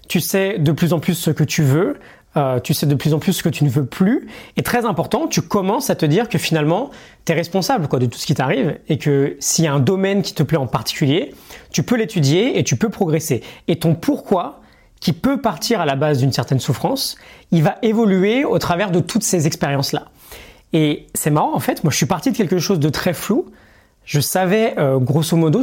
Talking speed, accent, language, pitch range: 240 wpm, French, French, 140-185 Hz